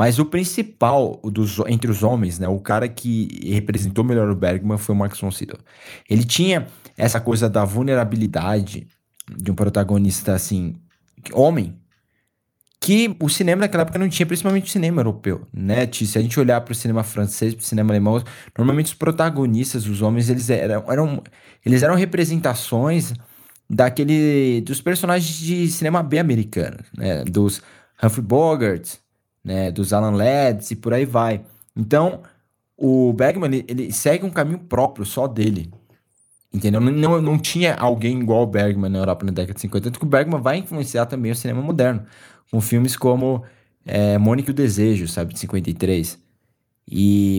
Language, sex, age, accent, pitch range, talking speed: Portuguese, male, 20-39, Brazilian, 105-135 Hz, 160 wpm